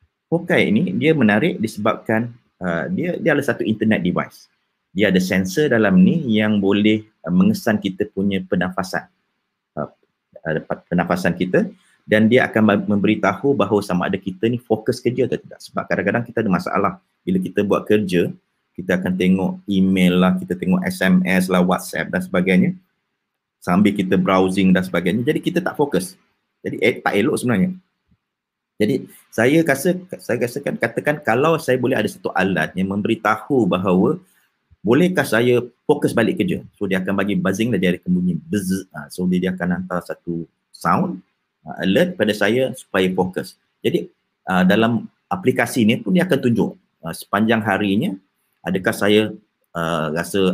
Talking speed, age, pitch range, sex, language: 155 wpm, 30-49, 95-125 Hz, male, Malay